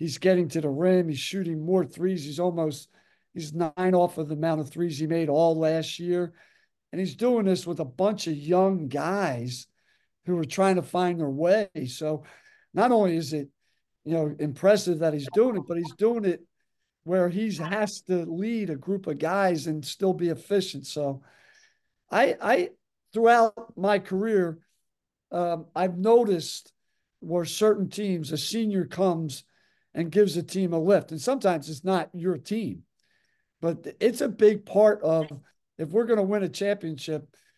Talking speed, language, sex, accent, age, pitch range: 180 wpm, English, male, American, 50-69, 165-200 Hz